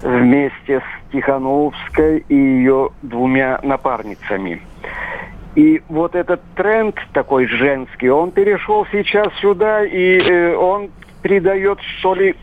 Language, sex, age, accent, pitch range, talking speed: Russian, male, 50-69, native, 140-185 Hz, 105 wpm